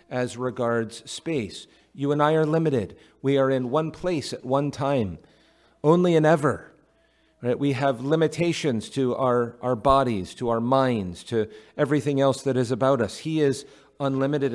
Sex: male